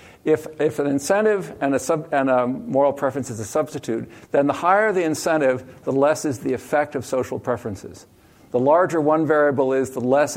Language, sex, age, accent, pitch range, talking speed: English, male, 60-79, American, 125-165 Hz, 195 wpm